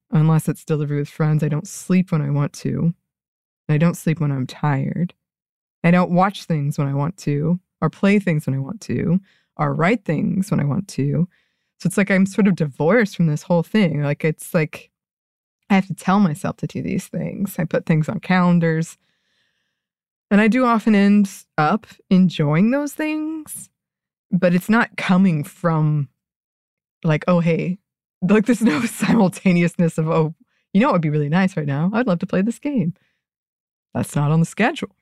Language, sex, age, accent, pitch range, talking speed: English, female, 20-39, American, 160-200 Hz, 190 wpm